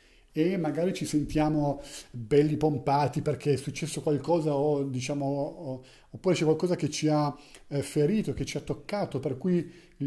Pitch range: 145-180 Hz